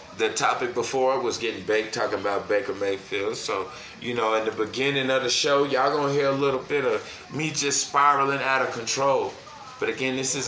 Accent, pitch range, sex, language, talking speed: American, 130-170 Hz, male, English, 210 wpm